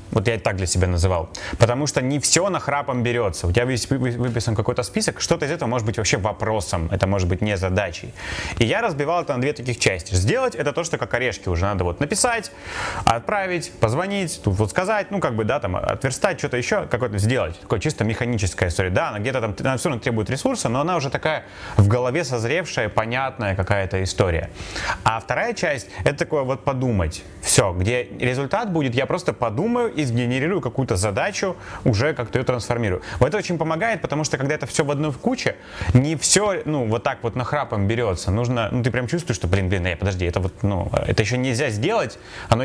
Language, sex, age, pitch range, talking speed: Russian, male, 20-39, 100-140 Hz, 210 wpm